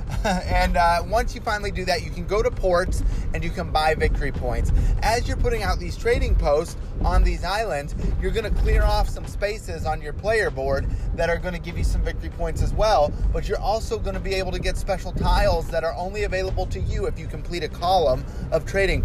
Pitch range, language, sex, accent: 140-180 Hz, English, male, American